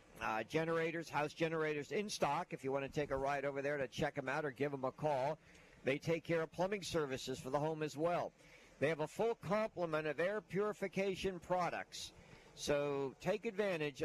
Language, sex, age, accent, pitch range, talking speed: English, male, 60-79, American, 145-175 Hz, 200 wpm